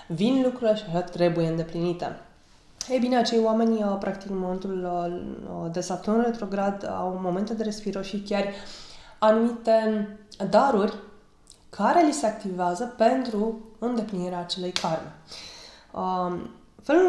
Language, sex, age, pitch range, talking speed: Romanian, female, 20-39, 180-225 Hz, 115 wpm